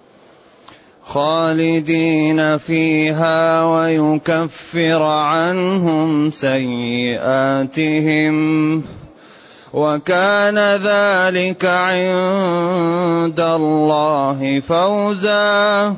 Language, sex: Arabic, male